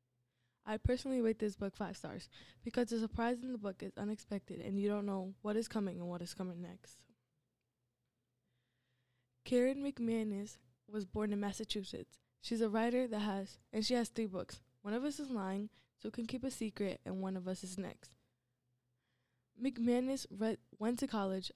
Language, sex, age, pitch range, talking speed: English, female, 10-29, 150-220 Hz, 175 wpm